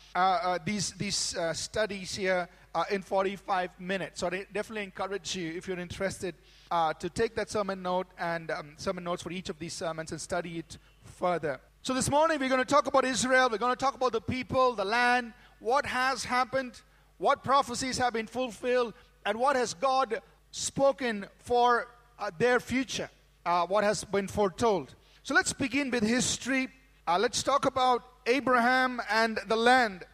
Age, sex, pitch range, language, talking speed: 40-59, male, 195-255 Hz, English, 180 wpm